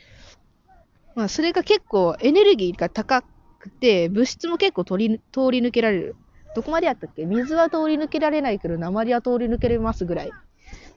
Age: 20-39